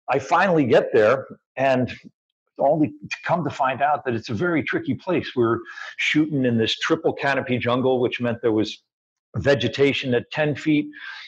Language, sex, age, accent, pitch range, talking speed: English, male, 50-69, American, 115-155 Hz, 165 wpm